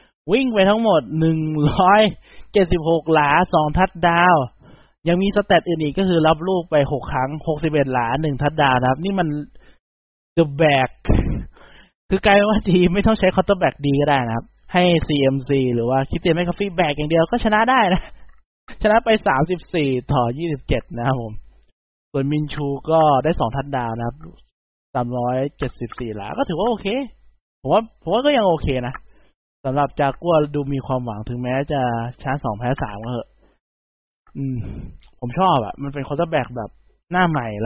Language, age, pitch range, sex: Thai, 20-39, 125-170 Hz, male